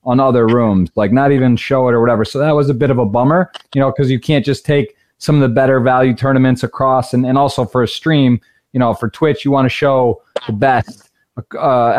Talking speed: 245 wpm